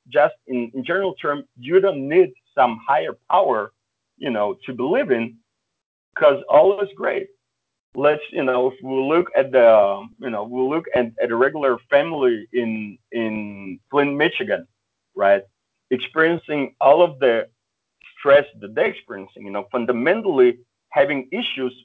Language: English